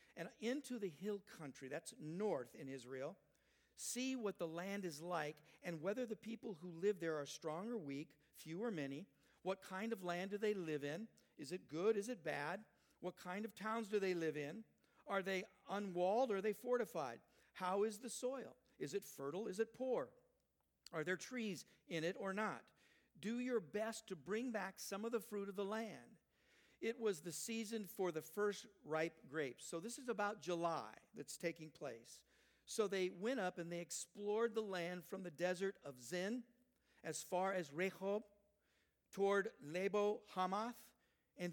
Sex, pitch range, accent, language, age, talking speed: male, 170-220 Hz, American, English, 50-69, 185 wpm